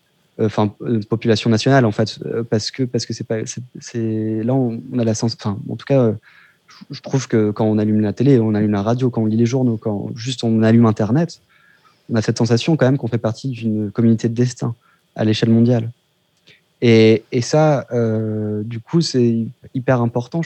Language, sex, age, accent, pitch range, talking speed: French, male, 20-39, French, 110-130 Hz, 195 wpm